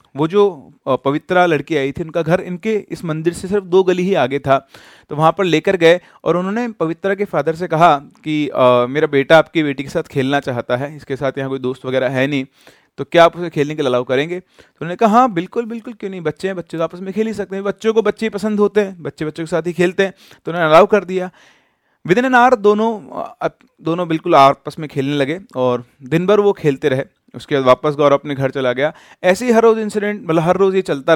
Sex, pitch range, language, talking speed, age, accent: male, 140-185 Hz, Hindi, 250 wpm, 30-49, native